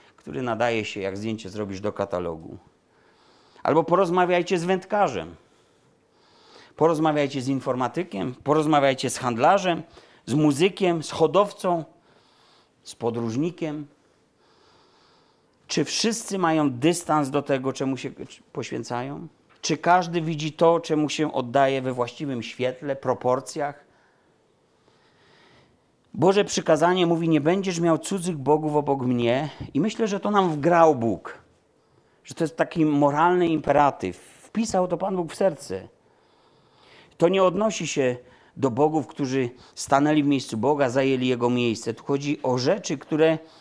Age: 40-59